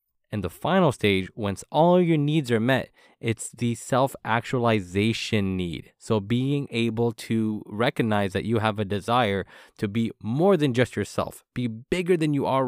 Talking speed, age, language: 165 wpm, 20-39, English